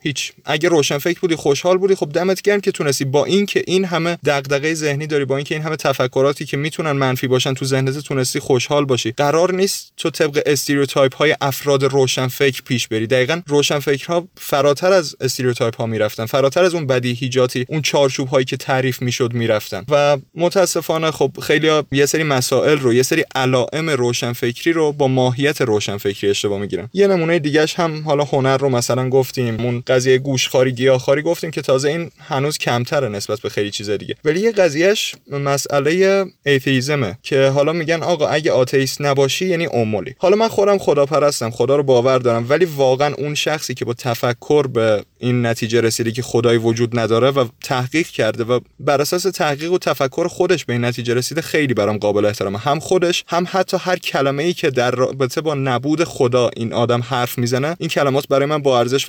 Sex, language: male, Persian